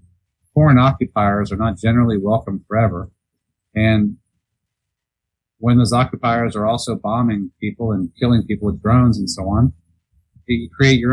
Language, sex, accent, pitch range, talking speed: English, male, American, 105-125 Hz, 140 wpm